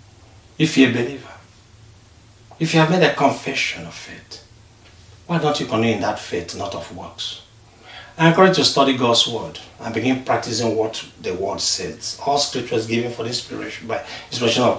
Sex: male